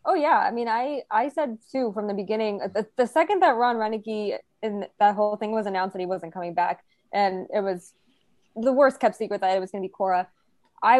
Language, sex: English, female